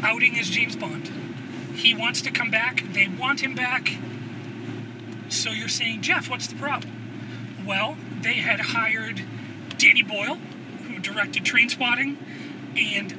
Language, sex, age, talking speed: English, male, 30-49, 140 wpm